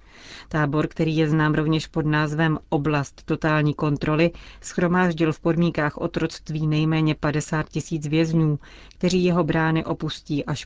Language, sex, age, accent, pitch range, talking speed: Czech, female, 30-49, native, 150-165 Hz, 130 wpm